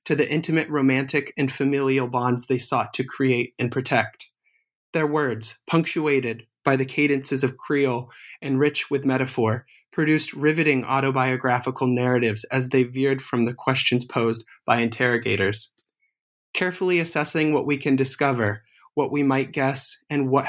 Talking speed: 145 wpm